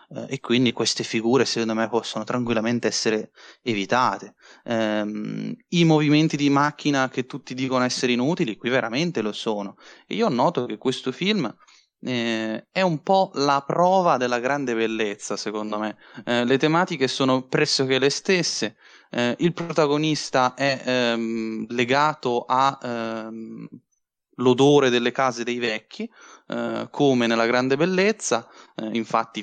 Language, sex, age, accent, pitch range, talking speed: Italian, male, 20-39, native, 115-150 Hz, 140 wpm